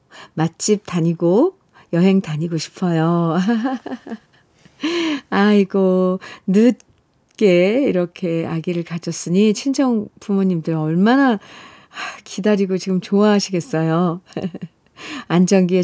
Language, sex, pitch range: Korean, female, 175-250 Hz